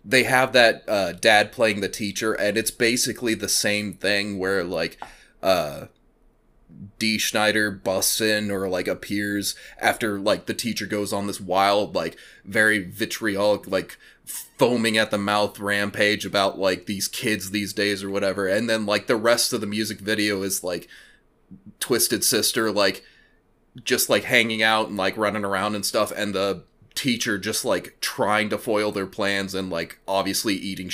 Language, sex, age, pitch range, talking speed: English, male, 20-39, 100-110 Hz, 170 wpm